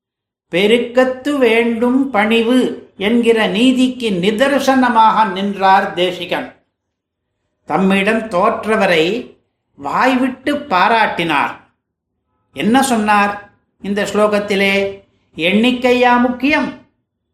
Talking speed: 60 wpm